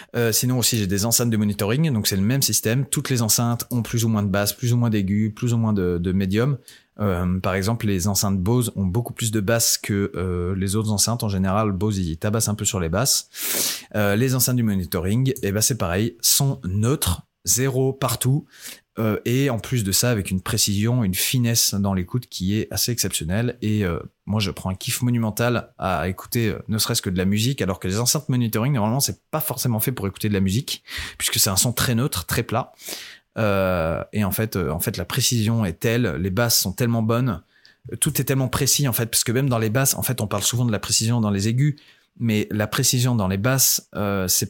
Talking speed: 235 wpm